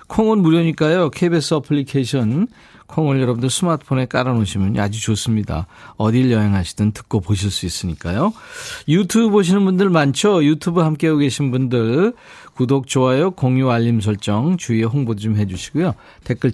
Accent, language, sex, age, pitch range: native, Korean, male, 40-59, 110-165 Hz